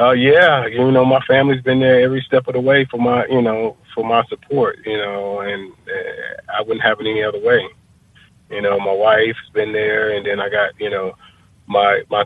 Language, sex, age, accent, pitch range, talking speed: English, male, 30-49, American, 95-115 Hz, 220 wpm